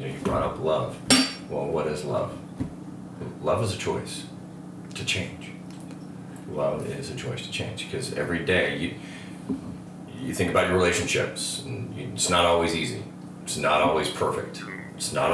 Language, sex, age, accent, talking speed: English, male, 30-49, American, 170 wpm